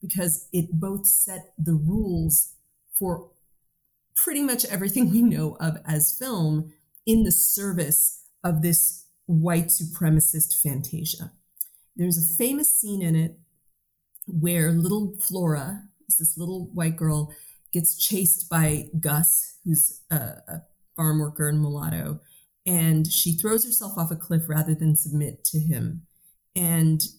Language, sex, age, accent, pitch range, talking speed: English, female, 30-49, American, 160-195 Hz, 130 wpm